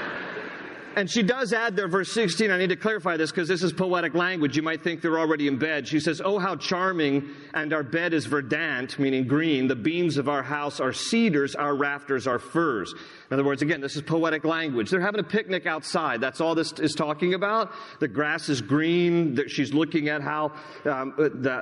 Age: 40-59